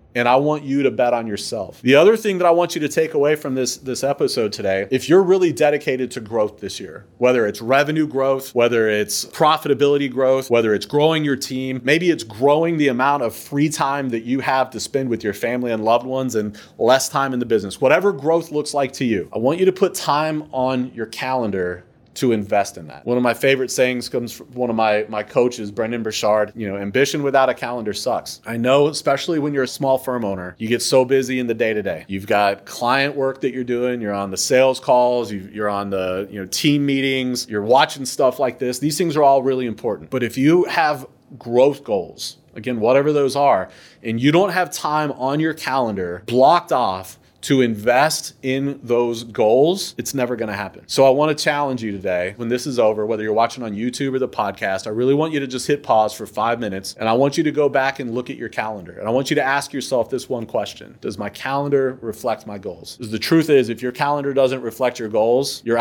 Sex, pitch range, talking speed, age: male, 115-140 Hz, 235 wpm, 30-49